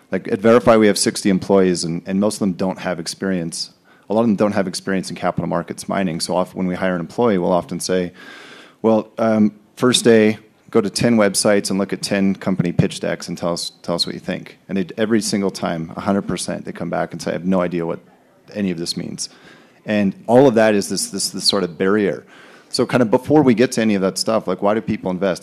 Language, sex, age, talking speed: English, male, 30-49, 250 wpm